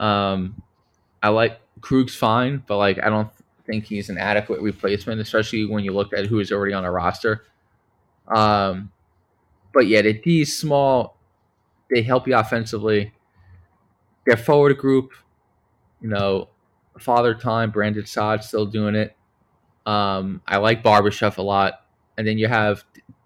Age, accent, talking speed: 20-39, American, 150 wpm